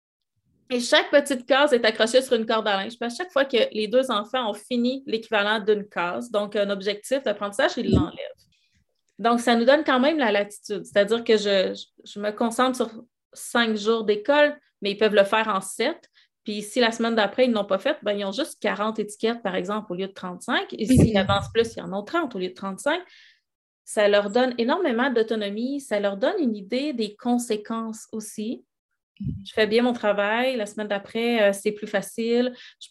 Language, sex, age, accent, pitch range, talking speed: French, female, 30-49, Canadian, 210-250 Hz, 210 wpm